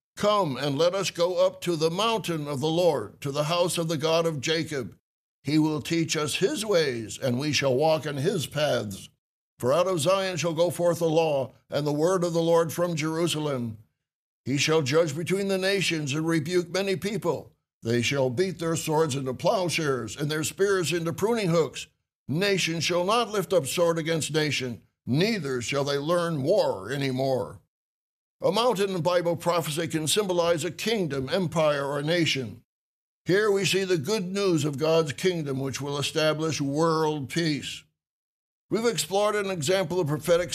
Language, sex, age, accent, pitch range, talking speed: English, male, 60-79, American, 145-180 Hz, 180 wpm